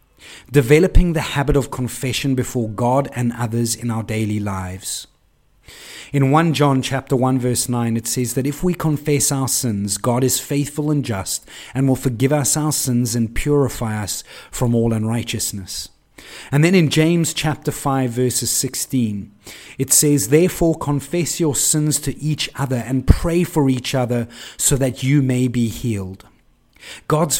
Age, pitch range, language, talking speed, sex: 30-49, 120-150 Hz, English, 160 wpm, male